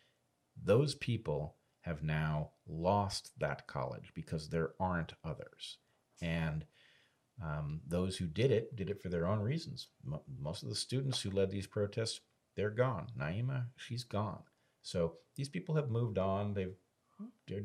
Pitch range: 80-130 Hz